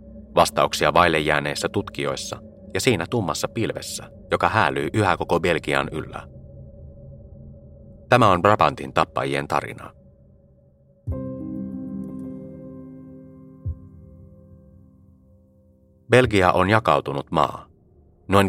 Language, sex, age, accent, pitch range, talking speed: Finnish, male, 30-49, native, 70-90 Hz, 80 wpm